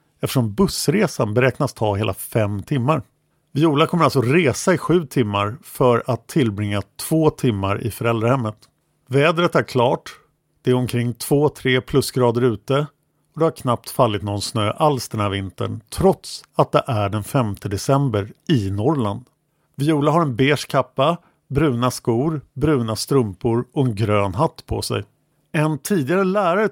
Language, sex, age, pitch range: English, male, 50-69, 120-160 Hz